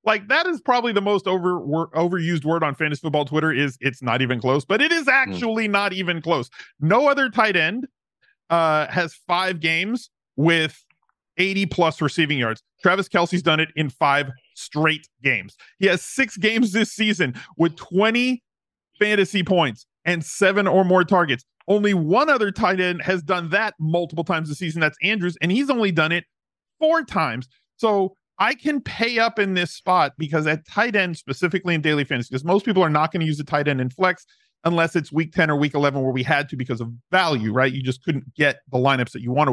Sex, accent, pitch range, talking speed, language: male, American, 150-200 Hz, 205 wpm, English